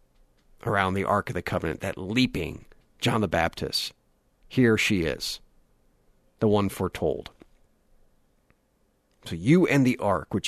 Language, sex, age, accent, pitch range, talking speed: English, male, 40-59, American, 120-160 Hz, 130 wpm